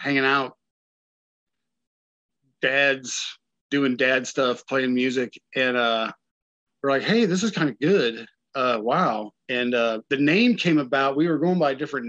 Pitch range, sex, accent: 120-150 Hz, male, American